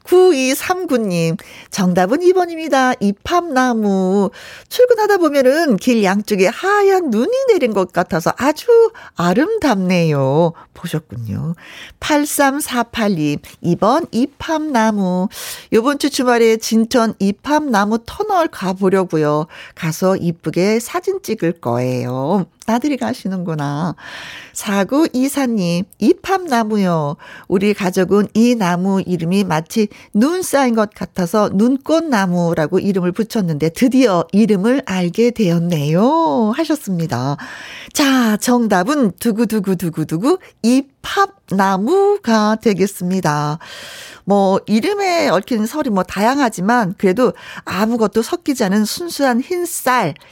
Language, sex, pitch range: Korean, female, 185-265 Hz